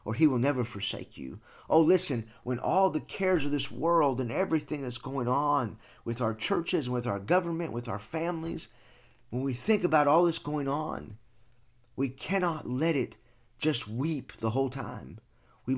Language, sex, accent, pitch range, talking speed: English, male, American, 115-150 Hz, 185 wpm